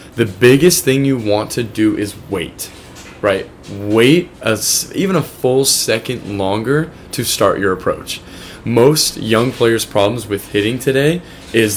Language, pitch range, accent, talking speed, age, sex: English, 100-130 Hz, American, 150 wpm, 20-39, male